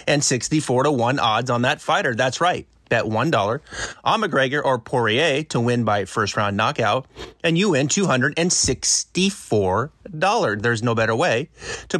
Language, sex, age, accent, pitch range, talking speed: English, male, 30-49, American, 110-145 Hz, 155 wpm